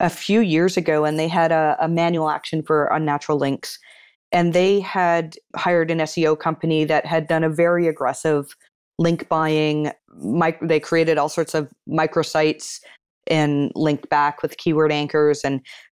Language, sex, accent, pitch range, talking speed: English, female, American, 155-175 Hz, 160 wpm